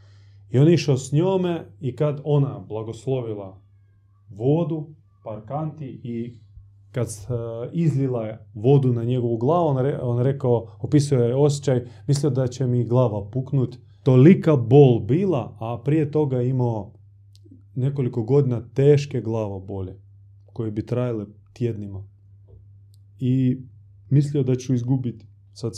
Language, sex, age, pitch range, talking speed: Croatian, male, 30-49, 105-135 Hz, 120 wpm